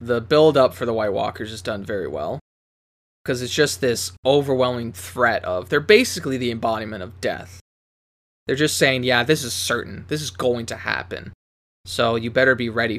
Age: 20-39